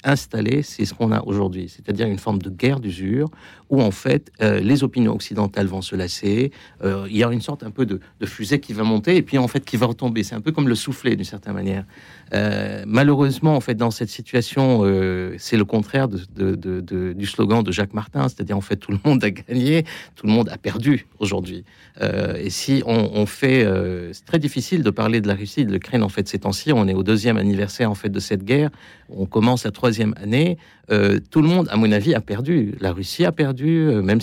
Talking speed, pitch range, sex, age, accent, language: 240 wpm, 100-135 Hz, male, 50-69, French, French